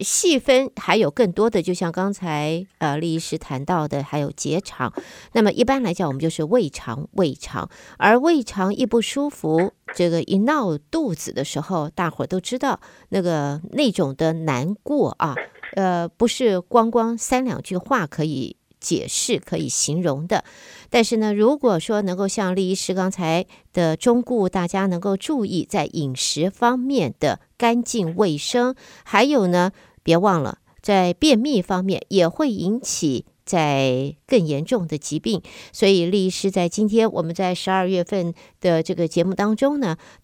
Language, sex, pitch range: Chinese, female, 165-230 Hz